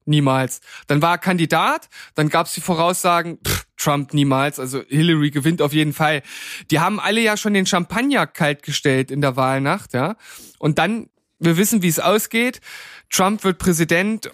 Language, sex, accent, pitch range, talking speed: German, male, German, 155-190 Hz, 170 wpm